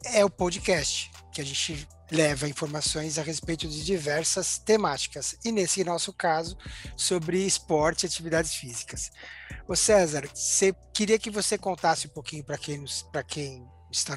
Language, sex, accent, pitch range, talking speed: Portuguese, male, Brazilian, 145-185 Hz, 150 wpm